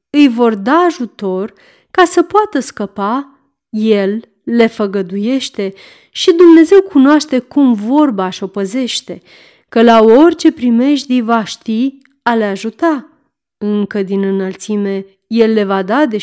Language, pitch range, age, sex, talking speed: Romanian, 205-285 Hz, 30-49, female, 125 wpm